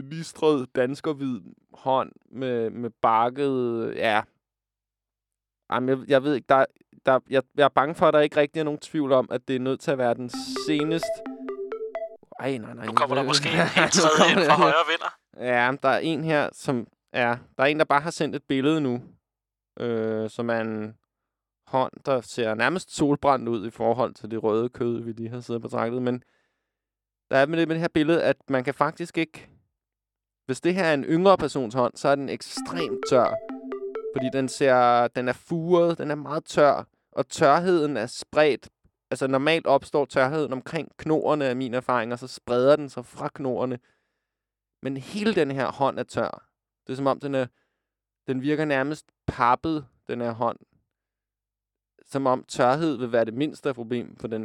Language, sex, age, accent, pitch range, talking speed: Danish, male, 20-39, native, 120-150 Hz, 195 wpm